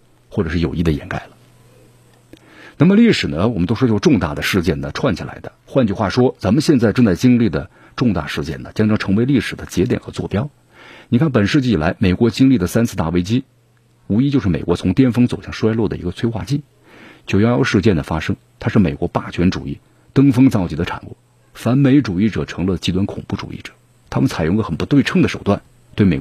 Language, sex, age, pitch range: Chinese, male, 50-69, 95-125 Hz